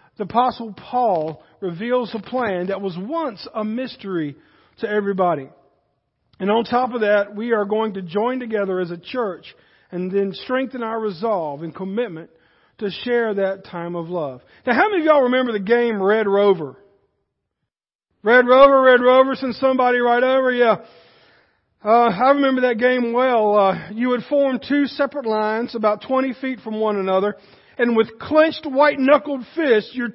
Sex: male